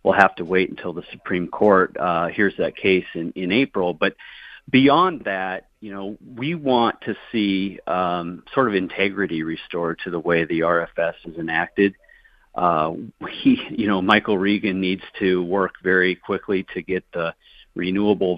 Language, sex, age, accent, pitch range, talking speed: English, male, 40-59, American, 95-110 Hz, 165 wpm